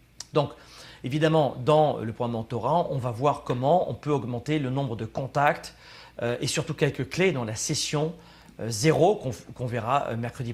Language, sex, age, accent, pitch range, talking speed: French, male, 40-59, French, 120-165 Hz, 180 wpm